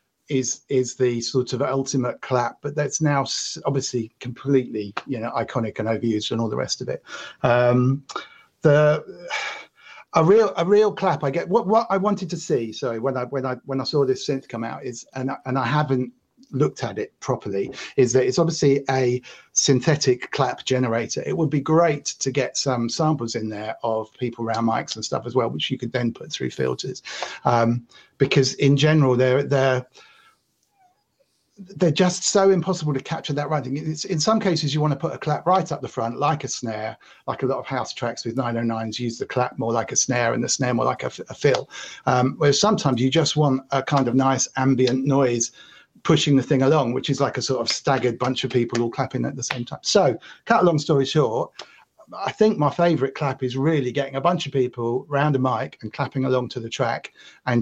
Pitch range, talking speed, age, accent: 125-150 Hz, 215 wpm, 50-69, British